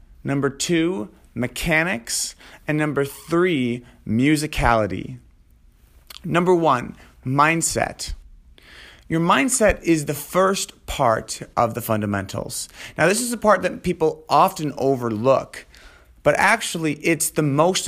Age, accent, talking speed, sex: 30-49, American, 110 wpm, male